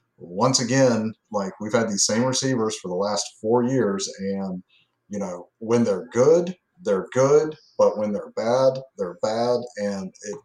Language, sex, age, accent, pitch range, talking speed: English, male, 30-49, American, 105-130 Hz, 165 wpm